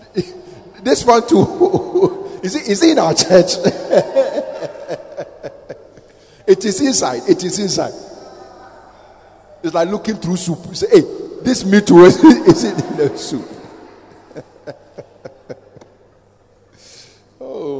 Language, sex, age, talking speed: English, male, 50-69, 105 wpm